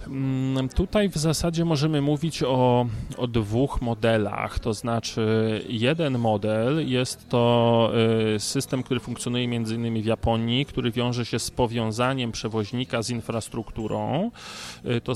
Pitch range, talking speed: 115-140 Hz, 125 wpm